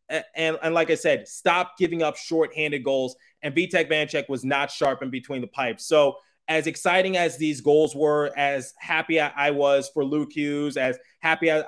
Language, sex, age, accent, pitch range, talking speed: English, male, 20-39, American, 135-160 Hz, 200 wpm